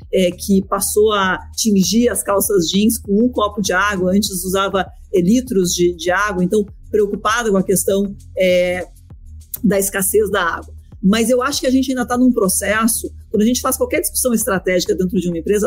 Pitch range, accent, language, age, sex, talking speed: 195-245 Hz, Brazilian, Portuguese, 40-59, female, 185 wpm